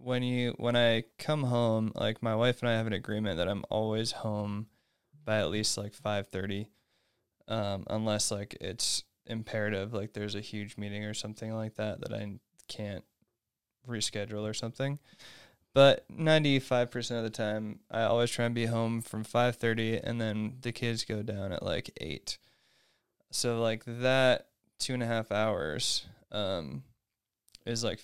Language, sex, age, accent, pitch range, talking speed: English, male, 20-39, American, 105-120 Hz, 165 wpm